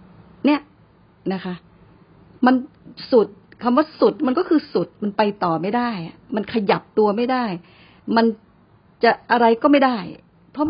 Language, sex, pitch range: Thai, female, 180-245 Hz